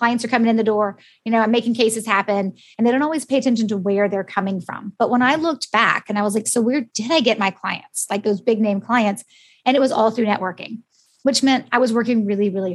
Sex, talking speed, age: female, 270 wpm, 20-39